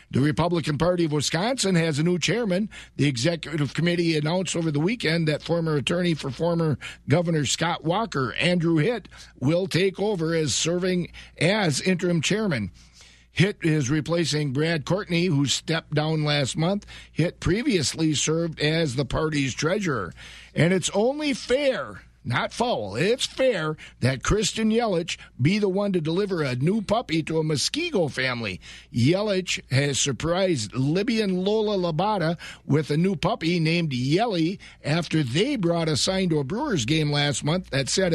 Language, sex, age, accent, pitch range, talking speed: English, male, 50-69, American, 150-185 Hz, 155 wpm